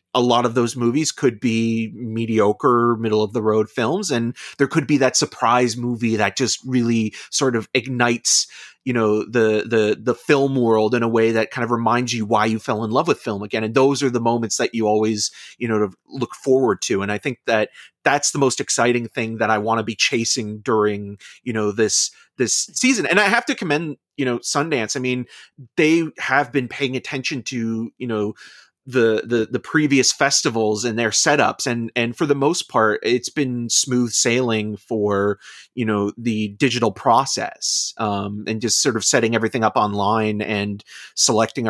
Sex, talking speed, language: male, 195 wpm, English